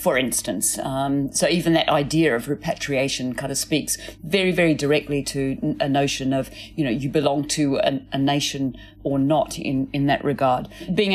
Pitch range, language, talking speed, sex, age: 135-155 Hz, English, 190 wpm, female, 40-59